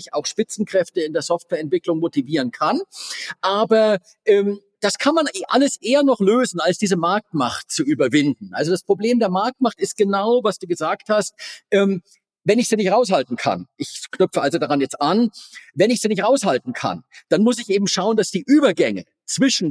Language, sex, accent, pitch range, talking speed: German, male, German, 170-225 Hz, 185 wpm